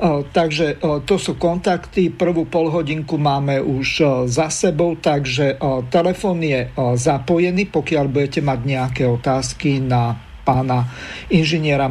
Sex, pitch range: male, 135-160 Hz